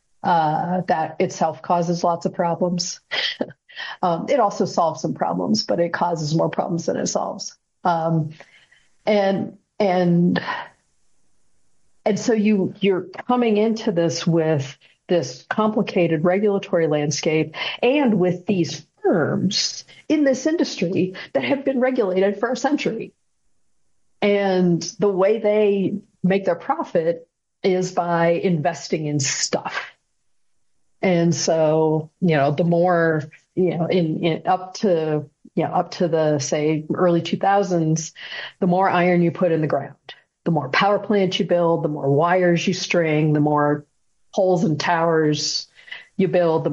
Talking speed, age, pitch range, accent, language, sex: 140 wpm, 50-69, 160-200 Hz, American, English, female